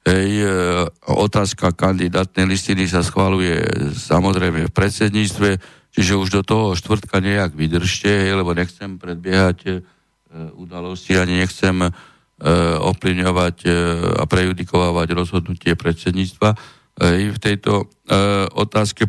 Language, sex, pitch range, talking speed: Slovak, male, 85-100 Hz, 110 wpm